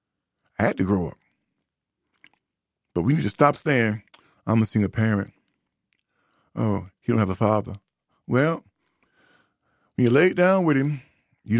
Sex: male